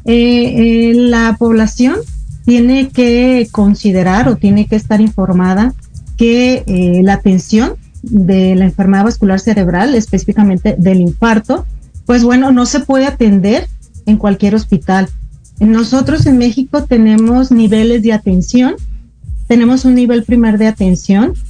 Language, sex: Spanish, female